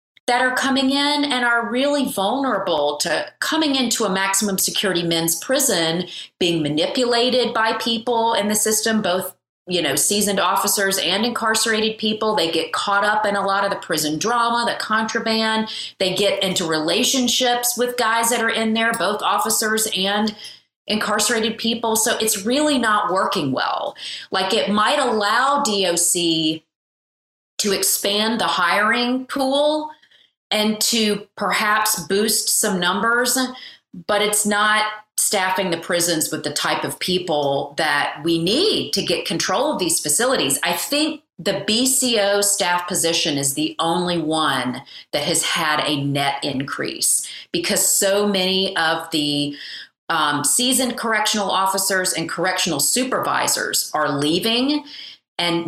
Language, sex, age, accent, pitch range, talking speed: English, female, 30-49, American, 170-230 Hz, 140 wpm